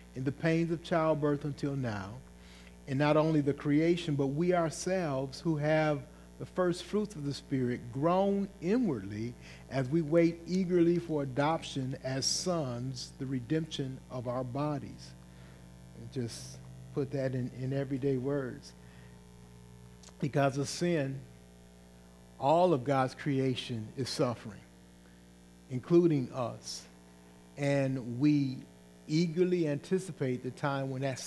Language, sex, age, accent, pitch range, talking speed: English, male, 50-69, American, 100-150 Hz, 125 wpm